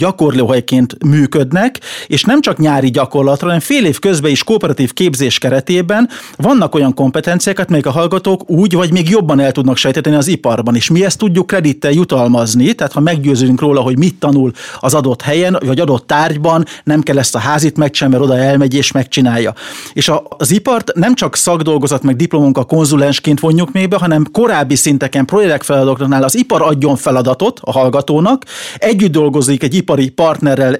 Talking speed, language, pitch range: 175 wpm, Hungarian, 135-175 Hz